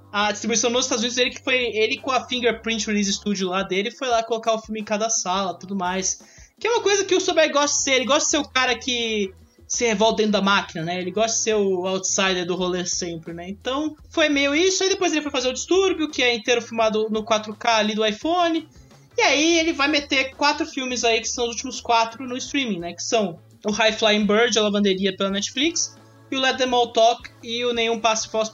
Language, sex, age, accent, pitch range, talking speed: English, male, 20-39, Brazilian, 205-275 Hz, 250 wpm